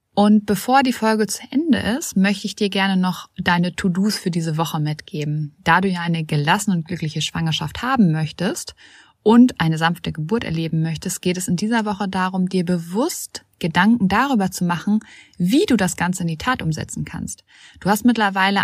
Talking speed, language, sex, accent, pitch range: 185 wpm, German, female, German, 175-215 Hz